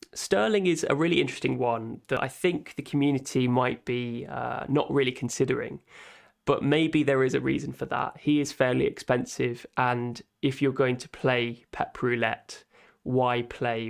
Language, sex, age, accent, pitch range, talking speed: English, male, 20-39, British, 120-145 Hz, 170 wpm